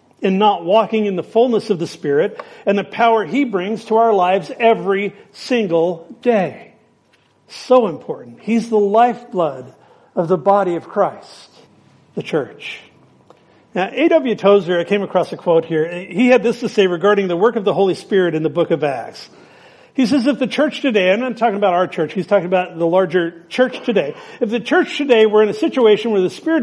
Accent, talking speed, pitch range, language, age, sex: American, 200 wpm, 175-230 Hz, English, 50-69, male